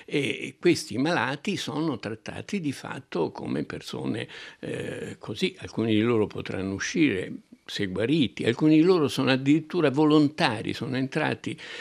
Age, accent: 60-79, native